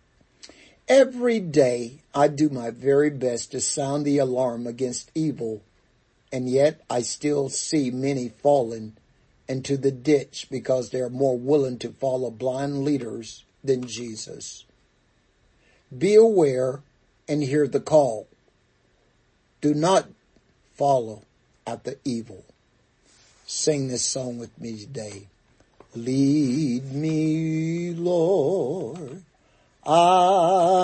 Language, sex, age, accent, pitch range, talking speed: English, male, 60-79, American, 130-200 Hz, 110 wpm